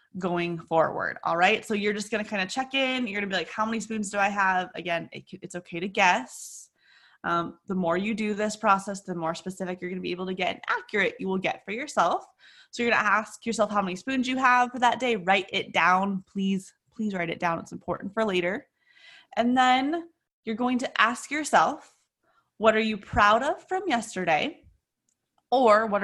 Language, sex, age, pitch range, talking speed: English, female, 20-39, 180-240 Hz, 220 wpm